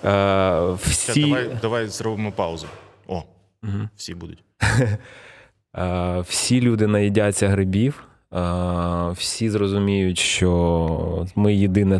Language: Ukrainian